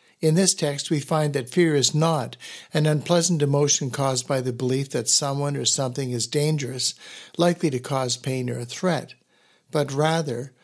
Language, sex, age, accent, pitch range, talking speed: English, male, 60-79, American, 130-160 Hz, 175 wpm